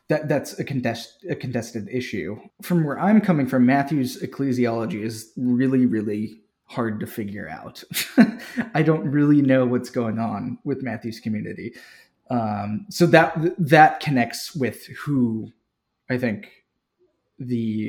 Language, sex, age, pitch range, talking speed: English, male, 20-39, 120-160 Hz, 140 wpm